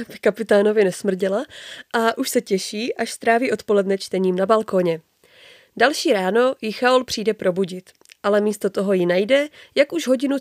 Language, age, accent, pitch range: Czech, 20-39, native, 195-260 Hz